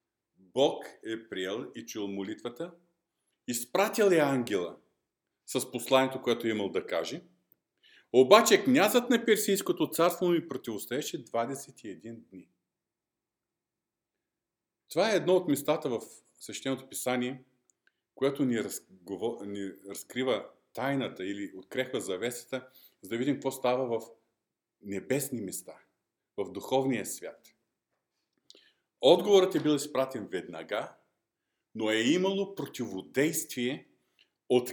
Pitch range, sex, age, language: 115-150 Hz, male, 40-59, Bulgarian